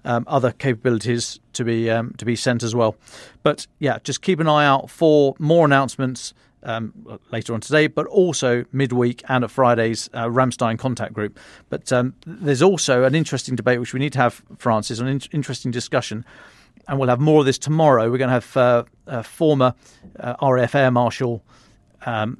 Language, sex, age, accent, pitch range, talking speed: English, male, 40-59, British, 120-140 Hz, 190 wpm